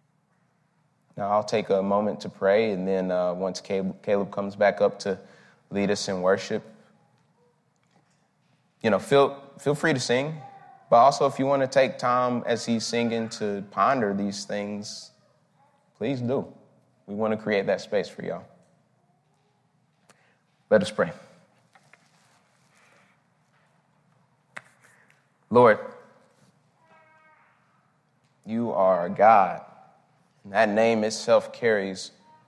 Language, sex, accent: English, male, American